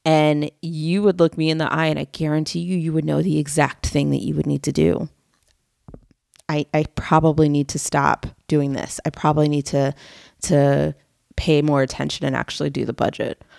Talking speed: 200 wpm